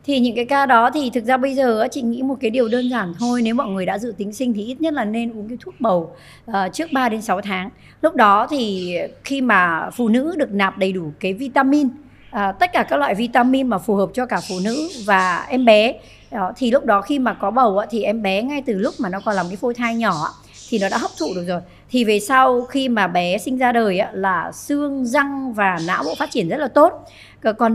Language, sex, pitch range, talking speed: Vietnamese, male, 195-265 Hz, 250 wpm